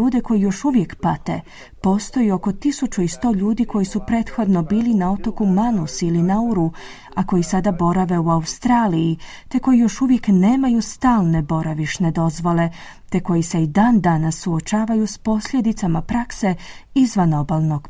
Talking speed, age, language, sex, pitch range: 150 wpm, 40-59, Croatian, female, 170-230 Hz